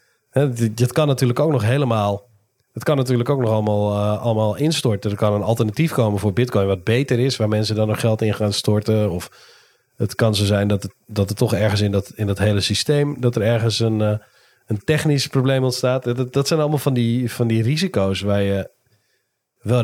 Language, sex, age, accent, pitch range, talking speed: Dutch, male, 40-59, Dutch, 105-130 Hz, 210 wpm